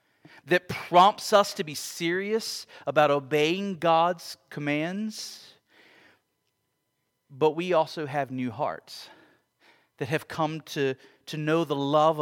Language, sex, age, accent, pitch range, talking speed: English, male, 40-59, American, 125-180 Hz, 120 wpm